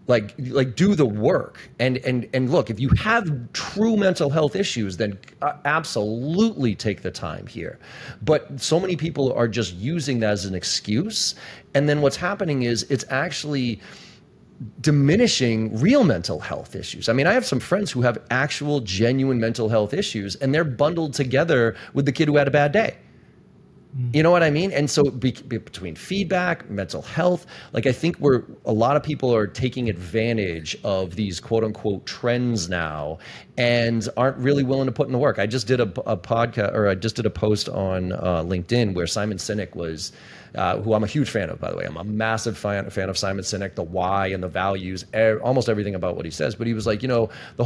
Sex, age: male, 30-49